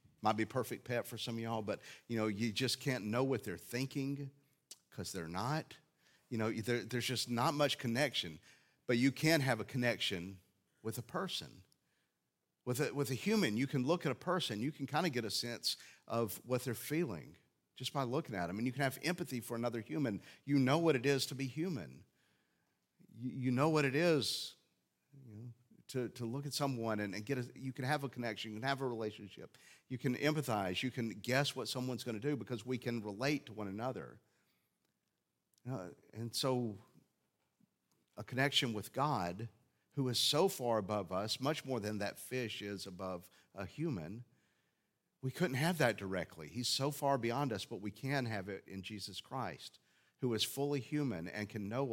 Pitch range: 110-140 Hz